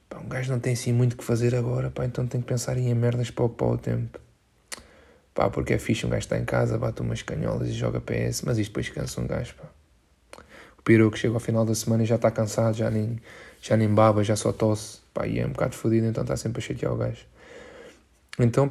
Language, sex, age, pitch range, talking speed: Portuguese, male, 20-39, 110-120 Hz, 245 wpm